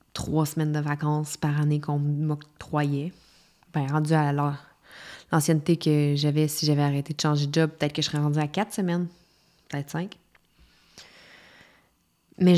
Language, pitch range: French, 150-190 Hz